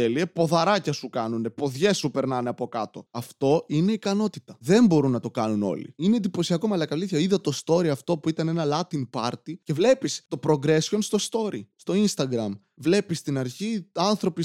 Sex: male